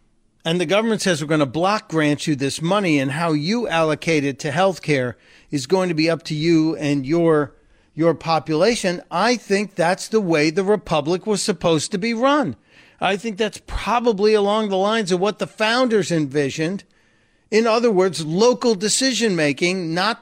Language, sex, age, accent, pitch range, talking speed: English, male, 40-59, American, 155-205 Hz, 180 wpm